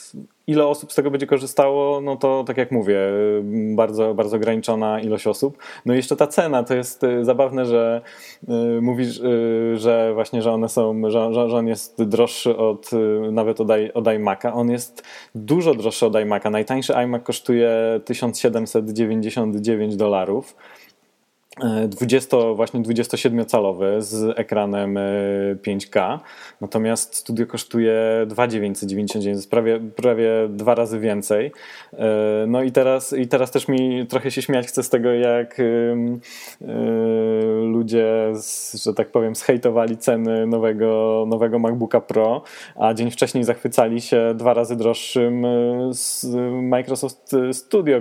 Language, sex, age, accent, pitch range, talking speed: Polish, male, 20-39, native, 110-125 Hz, 130 wpm